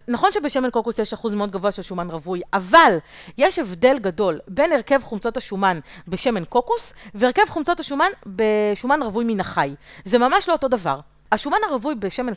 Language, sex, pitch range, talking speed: Hebrew, female, 190-275 Hz, 170 wpm